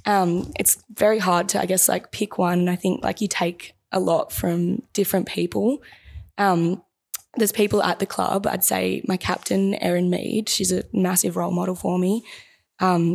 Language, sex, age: English, female, 10-29